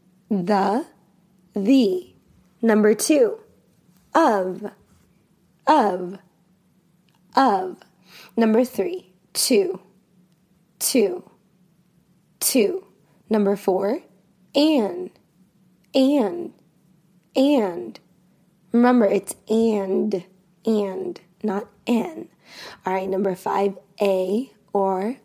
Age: 20-39